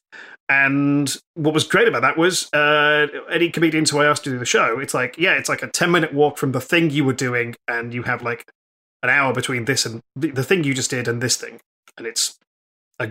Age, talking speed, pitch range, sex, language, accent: 30-49, 240 wpm, 130-160 Hz, male, English, British